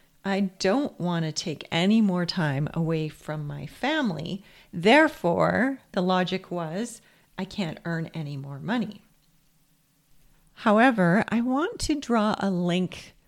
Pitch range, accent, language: 160-200 Hz, American, English